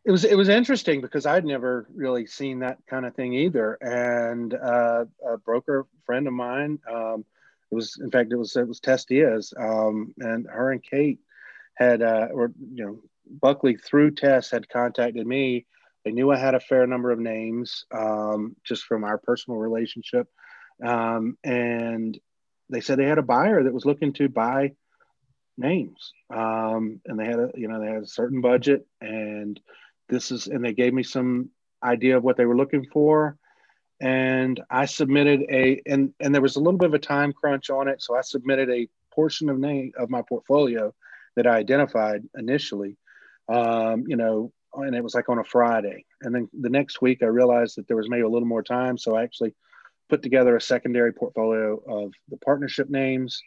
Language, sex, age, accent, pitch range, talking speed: English, male, 30-49, American, 115-135 Hz, 195 wpm